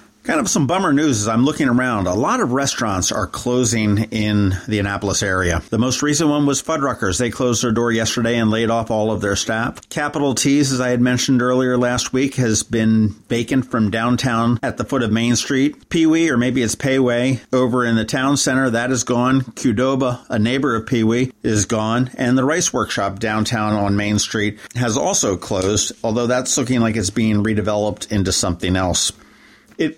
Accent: American